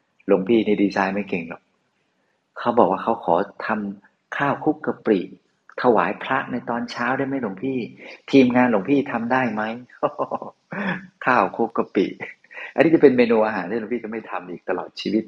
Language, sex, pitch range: Thai, male, 100-125 Hz